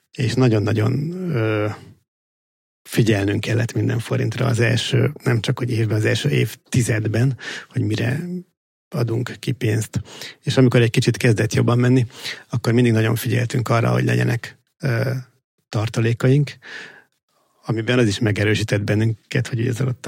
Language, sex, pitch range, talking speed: Hungarian, male, 110-130 Hz, 130 wpm